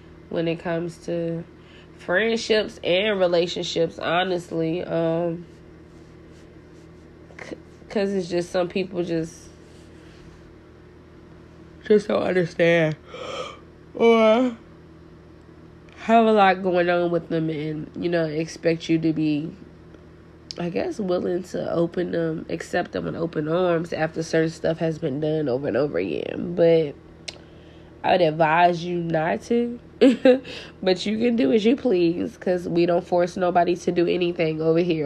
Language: English